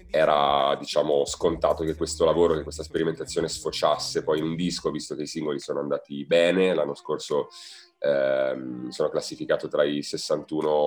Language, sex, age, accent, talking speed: Italian, male, 30-49, native, 160 wpm